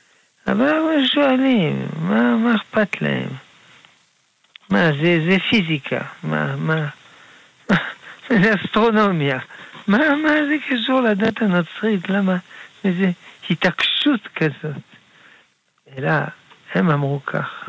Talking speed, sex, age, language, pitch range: 100 wpm, male, 60-79, Hebrew, 140-195 Hz